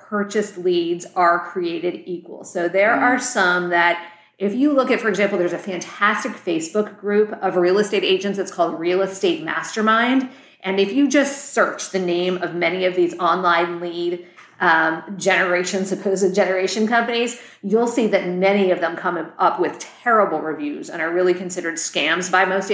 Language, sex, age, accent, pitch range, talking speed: English, female, 40-59, American, 180-230 Hz, 175 wpm